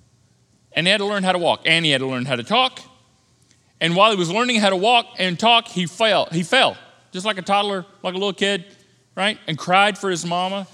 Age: 40-59